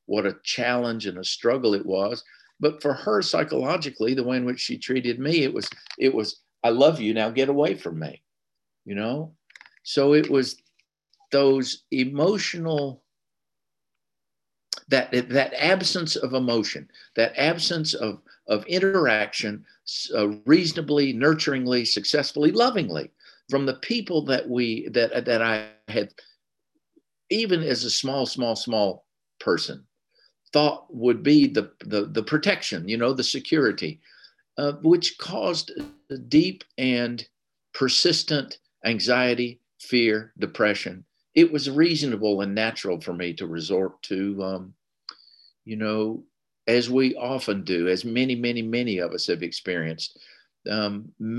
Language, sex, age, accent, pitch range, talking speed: English, male, 50-69, American, 110-150 Hz, 135 wpm